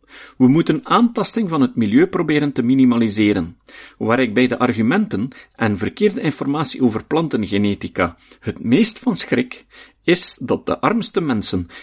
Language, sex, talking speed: Dutch, male, 140 wpm